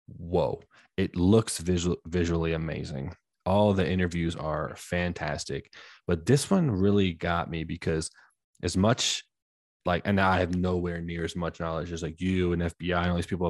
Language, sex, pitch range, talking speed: English, male, 85-95 Hz, 165 wpm